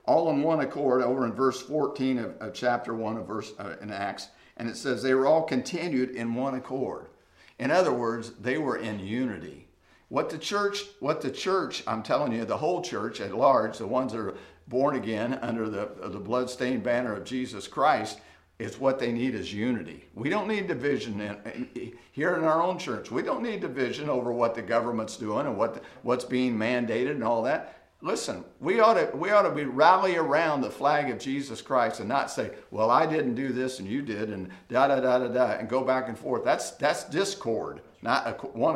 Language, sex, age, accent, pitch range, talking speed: English, male, 50-69, American, 110-135 Hz, 215 wpm